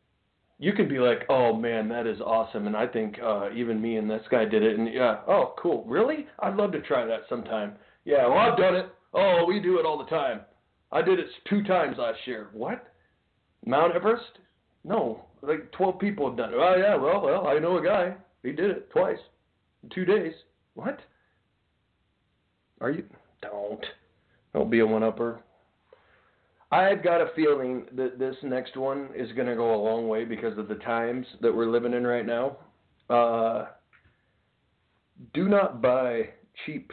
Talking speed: 185 wpm